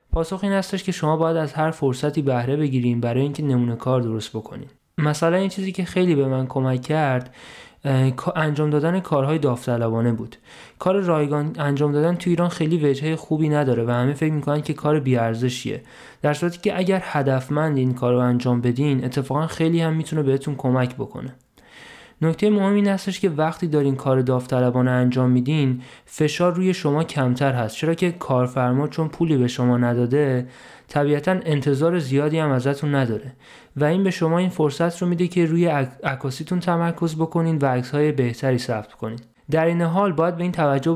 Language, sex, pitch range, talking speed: Persian, male, 125-165 Hz, 175 wpm